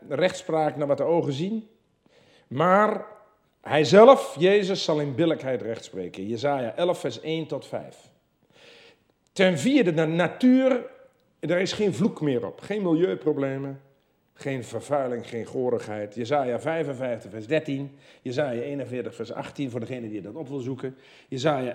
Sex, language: male, Dutch